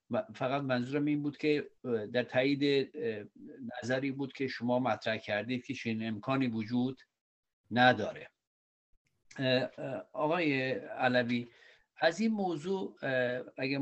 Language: Persian